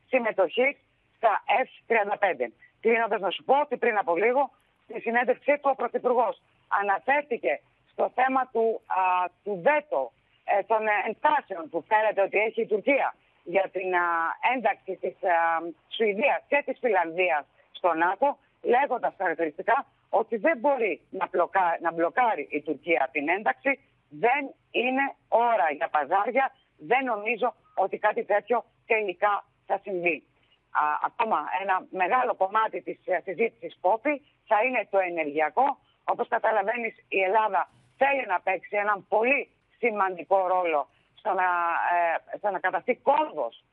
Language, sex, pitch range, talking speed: Greek, female, 180-245 Hz, 135 wpm